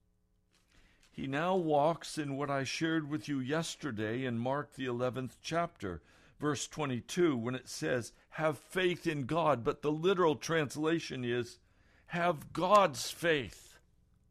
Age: 60-79